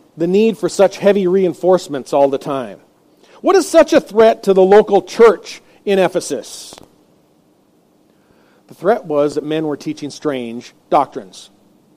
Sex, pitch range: male, 185-255 Hz